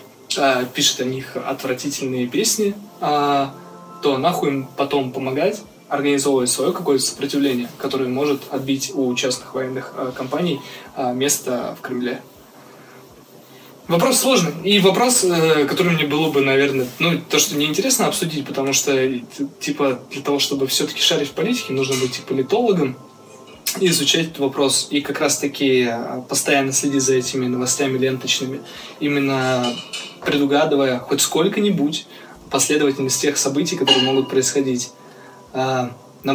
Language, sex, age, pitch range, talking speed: Russian, male, 20-39, 130-150 Hz, 125 wpm